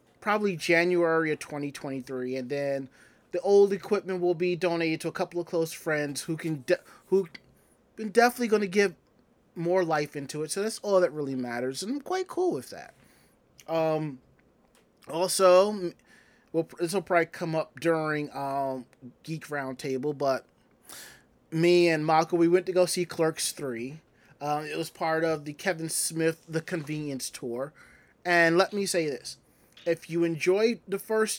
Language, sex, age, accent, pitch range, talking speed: English, male, 30-49, American, 150-190 Hz, 165 wpm